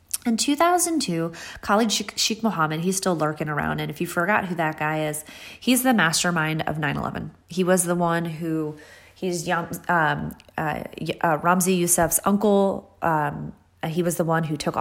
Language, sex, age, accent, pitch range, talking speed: English, female, 20-39, American, 155-185 Hz, 160 wpm